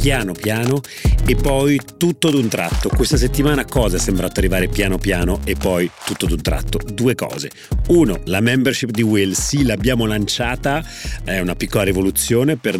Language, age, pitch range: Italian, 40-59, 95-125 Hz